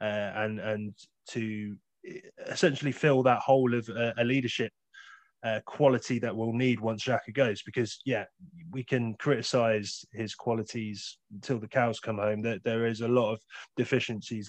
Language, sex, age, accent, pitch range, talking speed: English, male, 20-39, British, 110-130 Hz, 165 wpm